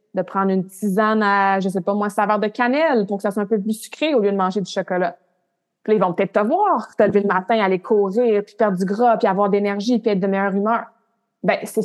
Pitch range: 185-225 Hz